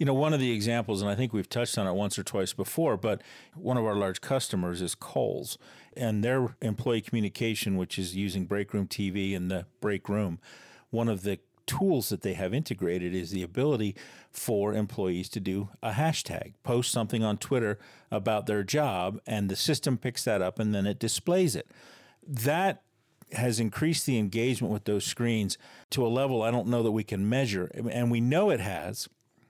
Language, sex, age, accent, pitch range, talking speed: English, male, 50-69, American, 100-125 Hz, 195 wpm